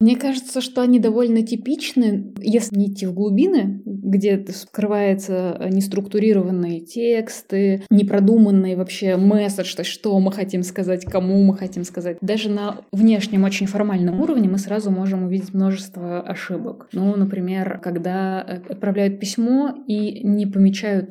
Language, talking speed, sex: Russian, 130 wpm, female